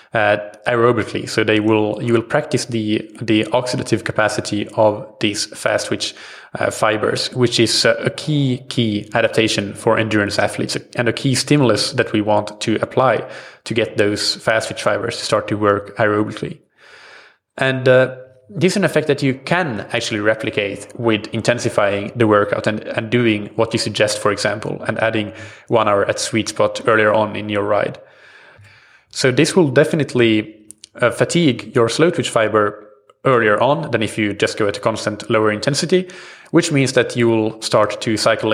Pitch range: 105-125 Hz